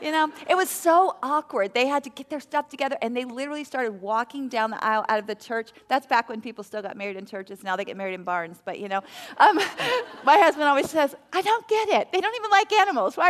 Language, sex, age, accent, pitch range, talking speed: English, female, 40-59, American, 210-290 Hz, 260 wpm